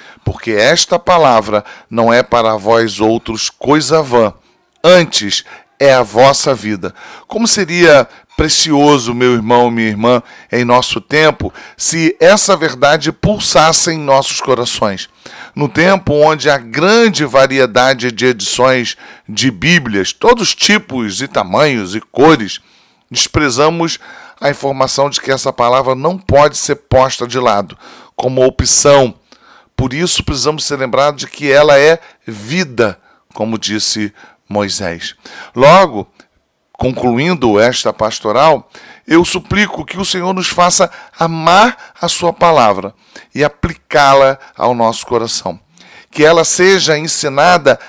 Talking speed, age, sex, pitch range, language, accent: 125 wpm, 40-59, male, 120-165 Hz, Portuguese, Brazilian